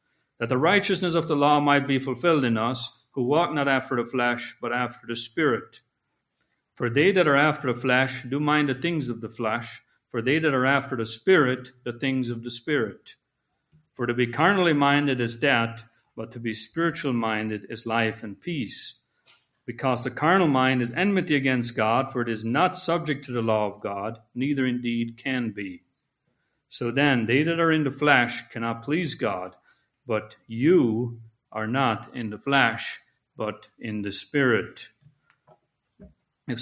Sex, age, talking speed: male, 50-69, 175 wpm